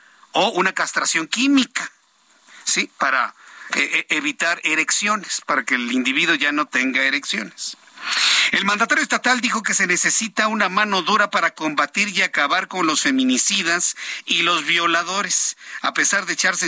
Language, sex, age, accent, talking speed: Spanish, male, 50-69, Mexican, 145 wpm